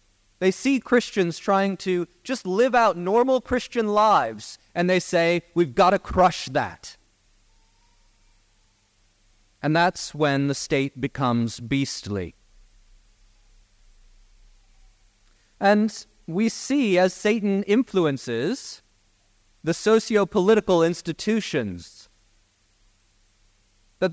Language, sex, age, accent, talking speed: English, male, 30-49, American, 90 wpm